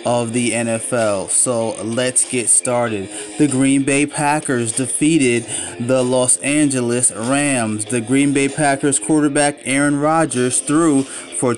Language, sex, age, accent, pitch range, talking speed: English, male, 30-49, American, 125-155 Hz, 130 wpm